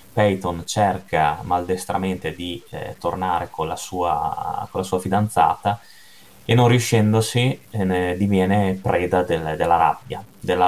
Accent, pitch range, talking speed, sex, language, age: native, 90-105 Hz, 135 wpm, male, Italian, 20-39